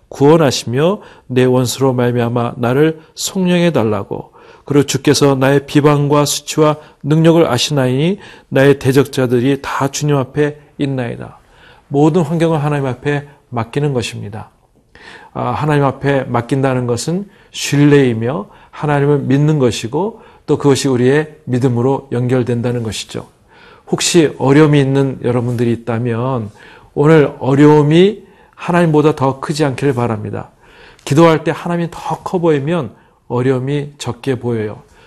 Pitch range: 130-155 Hz